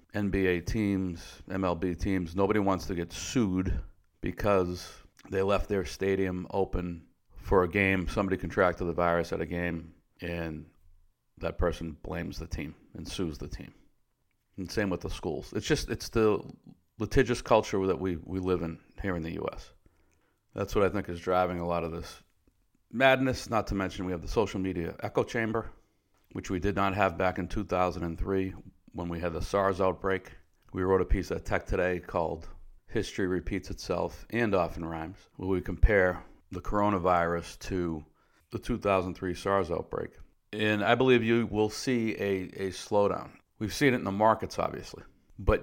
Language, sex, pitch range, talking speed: English, male, 85-100 Hz, 175 wpm